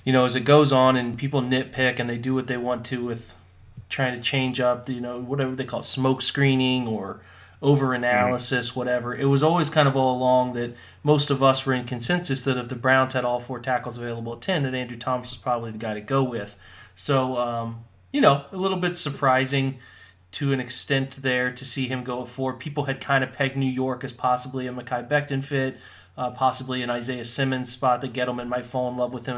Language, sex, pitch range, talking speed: English, male, 120-135 Hz, 230 wpm